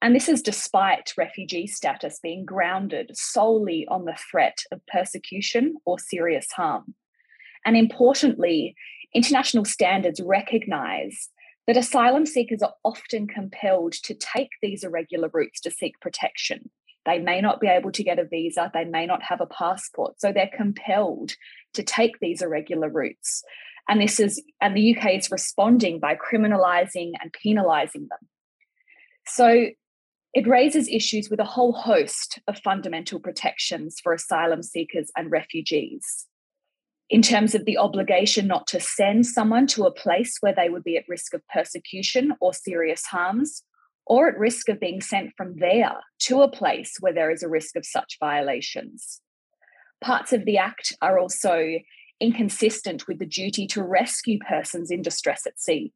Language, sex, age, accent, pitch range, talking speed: English, female, 20-39, Australian, 180-240 Hz, 160 wpm